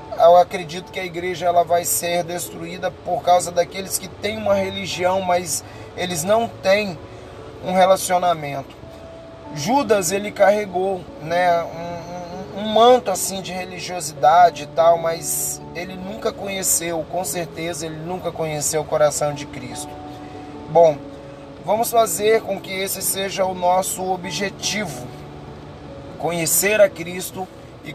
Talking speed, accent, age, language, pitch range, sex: 135 wpm, Brazilian, 20-39, Portuguese, 150-195 Hz, male